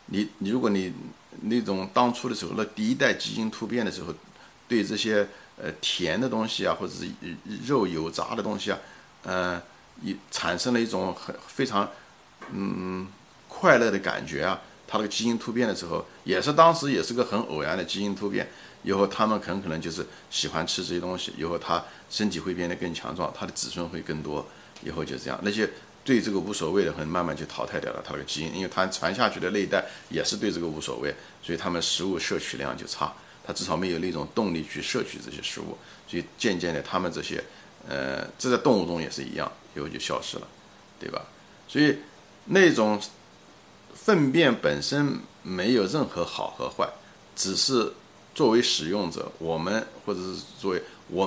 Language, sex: Chinese, male